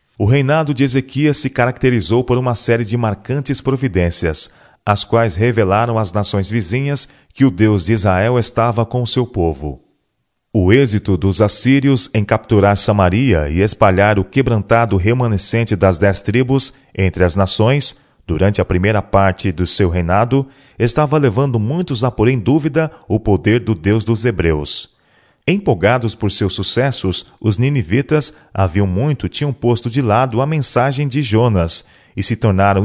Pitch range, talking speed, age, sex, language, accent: 100-130 Hz, 155 wpm, 40-59, male, Portuguese, Brazilian